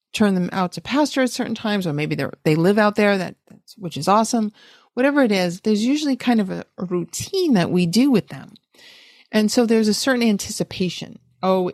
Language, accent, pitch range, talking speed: English, American, 175-230 Hz, 210 wpm